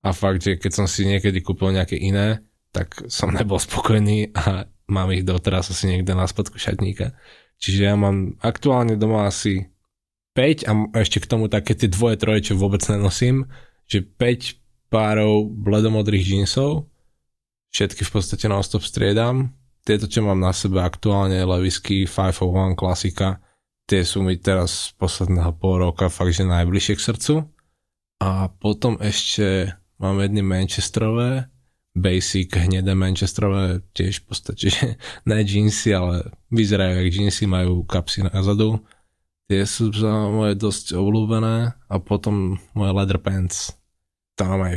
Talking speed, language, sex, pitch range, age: 145 wpm, Slovak, male, 95-110 Hz, 20-39